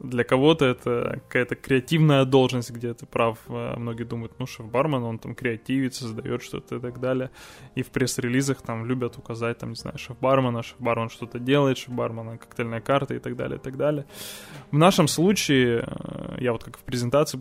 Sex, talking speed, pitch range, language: male, 175 wpm, 120-140 Hz, Russian